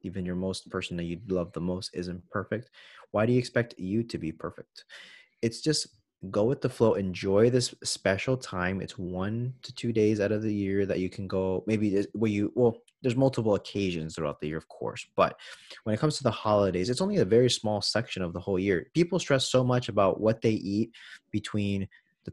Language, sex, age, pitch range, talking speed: English, male, 20-39, 95-125 Hz, 220 wpm